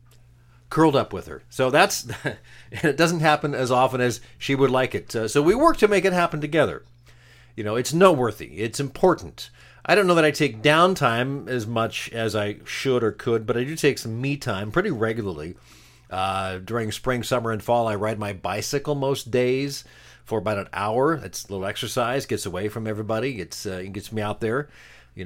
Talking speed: 205 wpm